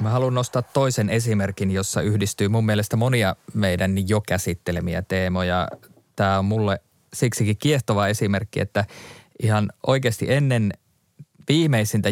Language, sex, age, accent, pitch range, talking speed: Finnish, male, 20-39, native, 95-110 Hz, 125 wpm